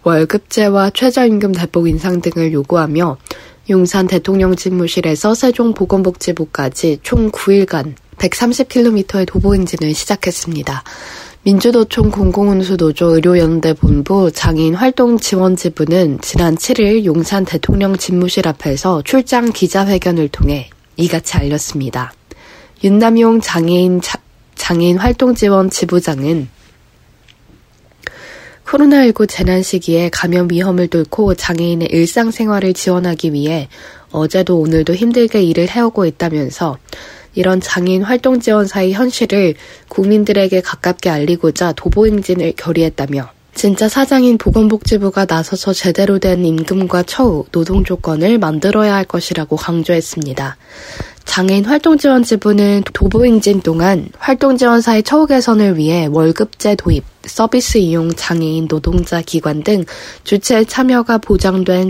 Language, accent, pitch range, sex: Korean, native, 165-210 Hz, female